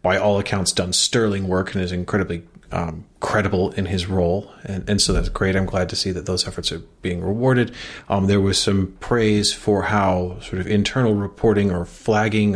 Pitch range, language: 95-110 Hz, English